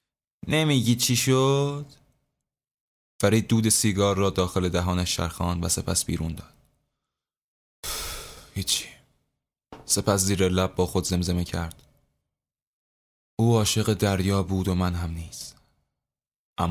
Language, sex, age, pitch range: Persian, male, 20-39, 90-120 Hz